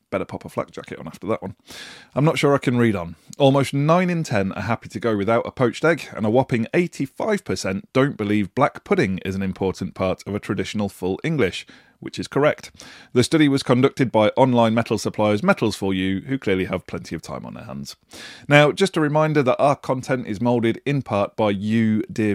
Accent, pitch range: British, 100-130 Hz